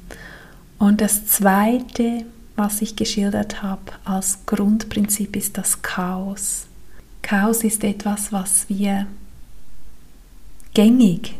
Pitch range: 195-215 Hz